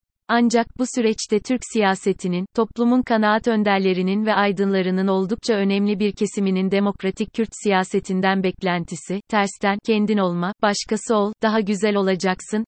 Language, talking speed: Turkish, 125 wpm